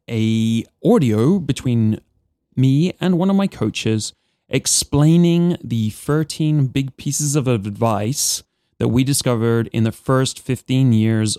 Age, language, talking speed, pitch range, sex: 20-39, English, 125 wpm, 110-140 Hz, male